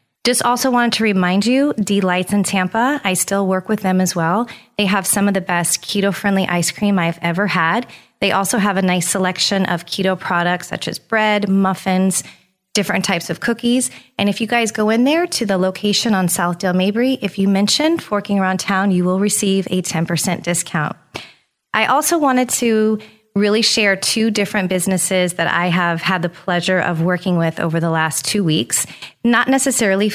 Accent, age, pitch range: American, 30-49, 175-210 Hz